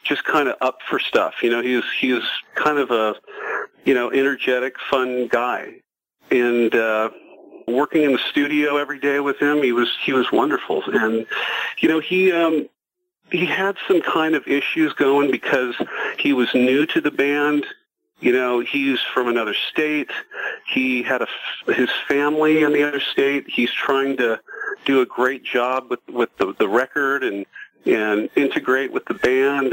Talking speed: 175 wpm